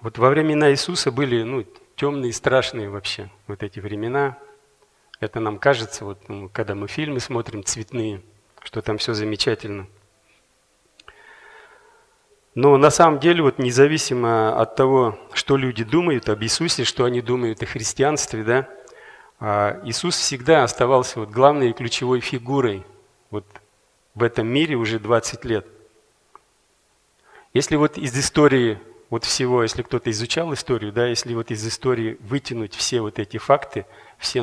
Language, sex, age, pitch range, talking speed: Russian, male, 40-59, 110-140 Hz, 130 wpm